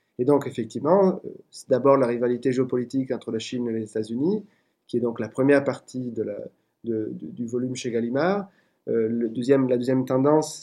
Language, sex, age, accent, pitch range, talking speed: French, male, 30-49, French, 120-145 Hz, 185 wpm